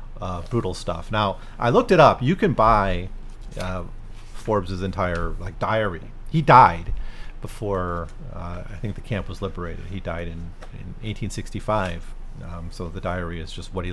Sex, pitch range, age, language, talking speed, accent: male, 85-115 Hz, 40-59, English, 170 wpm, American